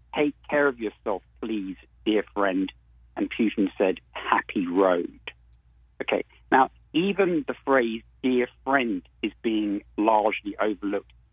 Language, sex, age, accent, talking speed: English, male, 50-69, British, 120 wpm